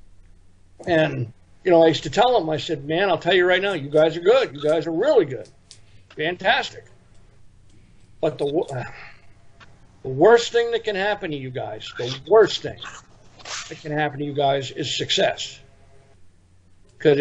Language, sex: English, male